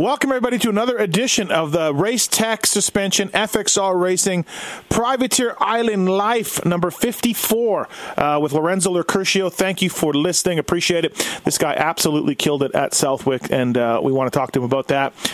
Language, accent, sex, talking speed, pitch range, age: English, American, male, 170 wpm, 150-185 Hz, 40-59